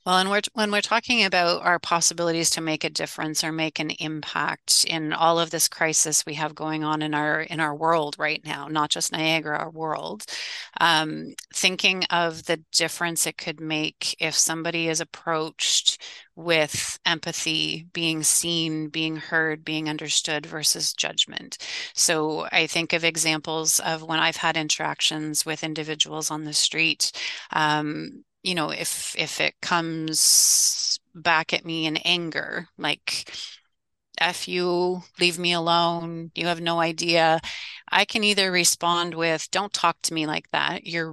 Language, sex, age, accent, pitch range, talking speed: English, female, 30-49, American, 155-175 Hz, 160 wpm